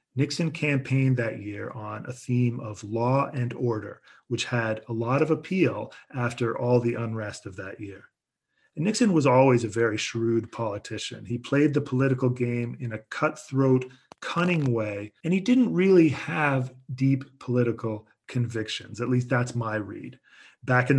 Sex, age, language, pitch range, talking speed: male, 40-59, English, 115-135 Hz, 165 wpm